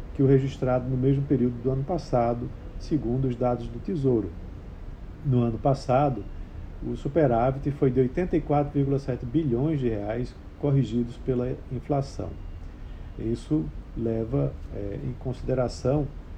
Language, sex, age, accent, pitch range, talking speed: Portuguese, male, 50-69, Brazilian, 110-140 Hz, 115 wpm